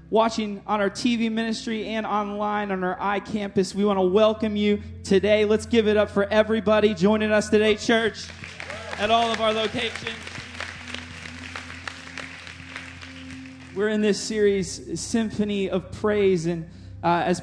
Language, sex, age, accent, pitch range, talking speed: English, male, 20-39, American, 170-200 Hz, 140 wpm